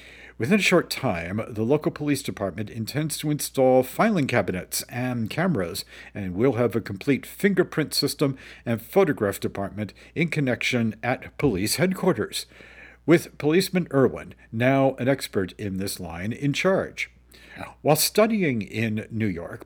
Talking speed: 140 wpm